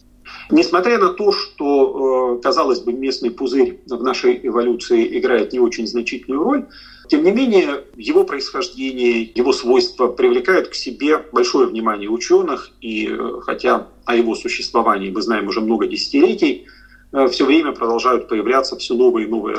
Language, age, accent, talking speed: Russian, 40-59, native, 145 wpm